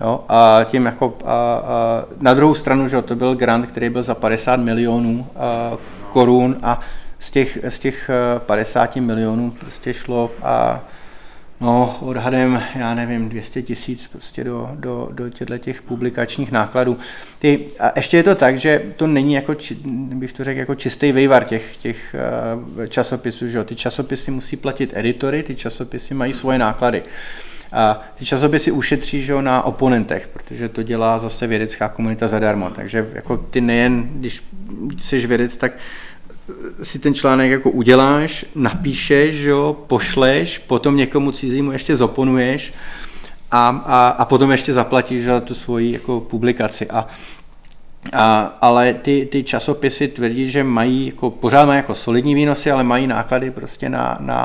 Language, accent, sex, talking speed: Czech, native, male, 155 wpm